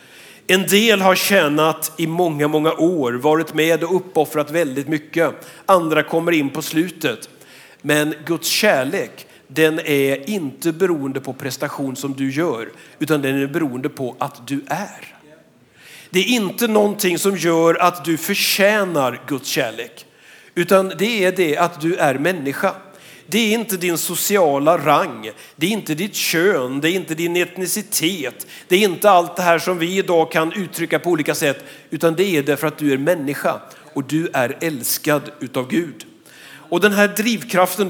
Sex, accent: male, native